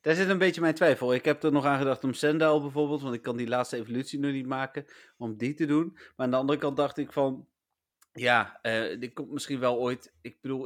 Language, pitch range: Dutch, 115-145 Hz